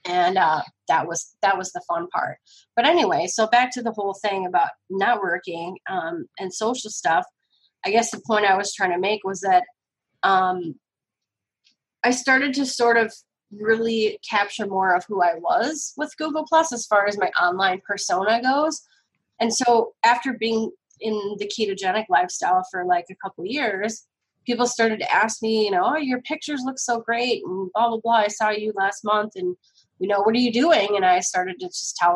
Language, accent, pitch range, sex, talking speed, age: English, American, 190-245 Hz, female, 200 wpm, 20-39